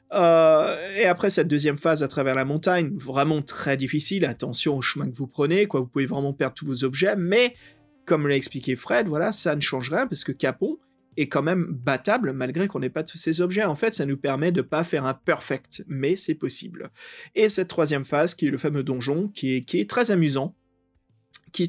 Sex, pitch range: male, 135-170 Hz